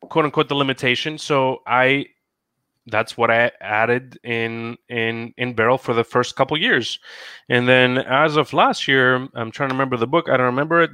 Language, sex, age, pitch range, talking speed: English, male, 20-39, 110-135 Hz, 190 wpm